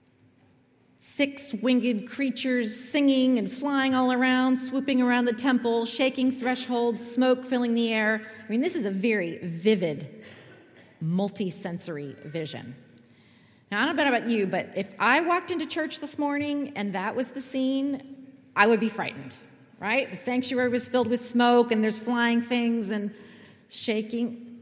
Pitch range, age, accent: 195-265 Hz, 40-59, American